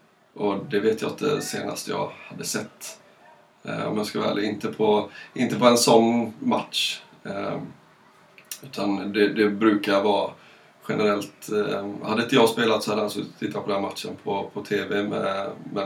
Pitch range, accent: 100-110 Hz, native